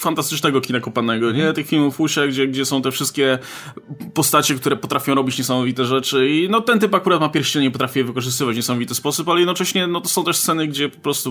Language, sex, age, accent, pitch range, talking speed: Polish, male, 20-39, native, 140-185 Hz, 220 wpm